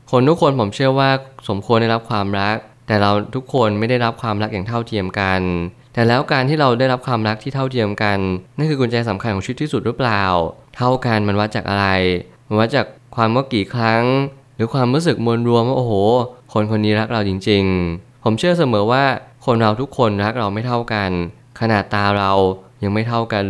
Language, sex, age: Thai, male, 20-39